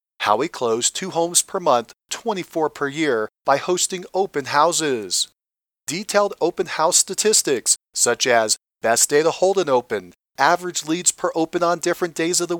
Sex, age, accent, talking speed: male, 40-59, American, 165 wpm